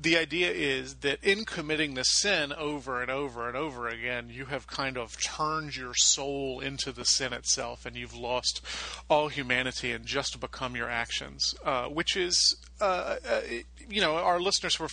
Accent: American